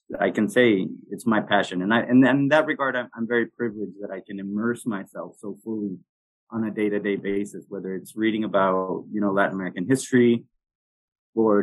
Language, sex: English, male